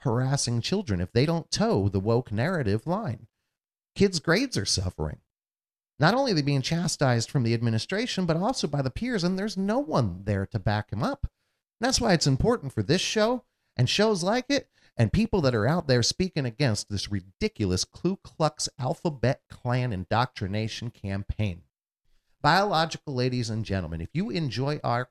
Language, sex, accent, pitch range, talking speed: English, male, American, 100-160 Hz, 175 wpm